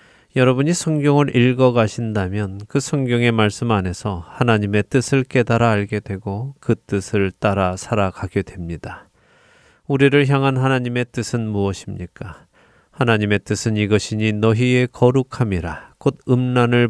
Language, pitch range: Korean, 100-125 Hz